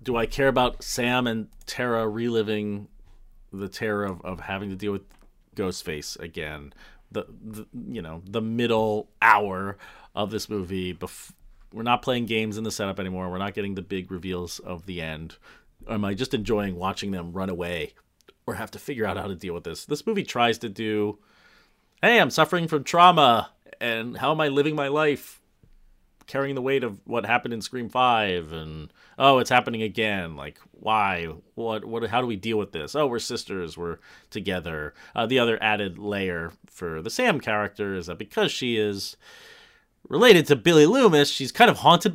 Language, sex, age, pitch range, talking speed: English, male, 30-49, 100-135 Hz, 190 wpm